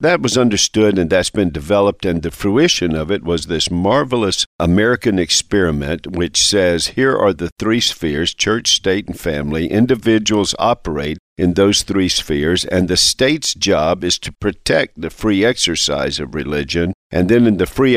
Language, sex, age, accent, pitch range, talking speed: English, male, 50-69, American, 90-120 Hz, 170 wpm